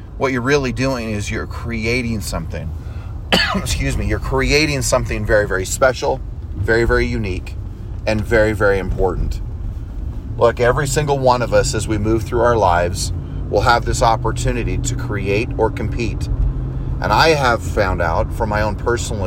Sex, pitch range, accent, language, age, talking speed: male, 95-120 Hz, American, English, 30-49, 160 wpm